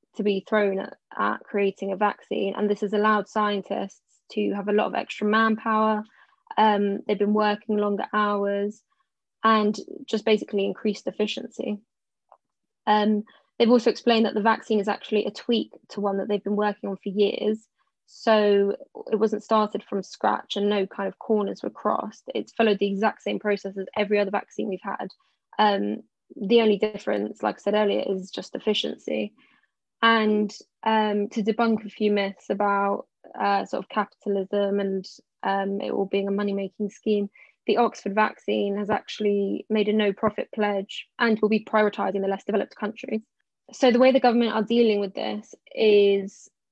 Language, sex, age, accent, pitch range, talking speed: English, female, 10-29, British, 200-220 Hz, 170 wpm